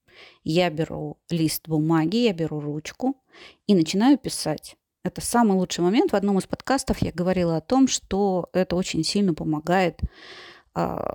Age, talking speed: 30-49, 150 wpm